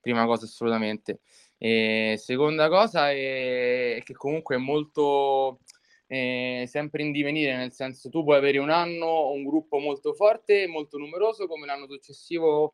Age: 20-39